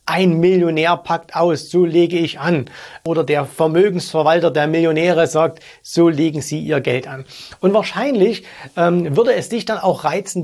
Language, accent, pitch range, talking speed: German, German, 150-200 Hz, 165 wpm